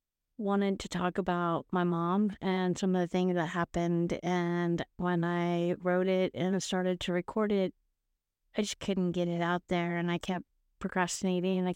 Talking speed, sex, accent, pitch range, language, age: 185 wpm, female, American, 175-200 Hz, English, 30-49